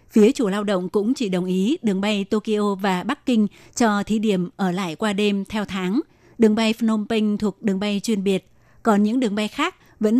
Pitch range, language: 190-225 Hz, Vietnamese